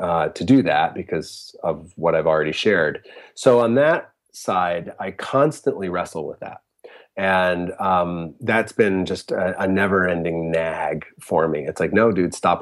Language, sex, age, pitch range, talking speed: English, male, 30-49, 85-100 Hz, 165 wpm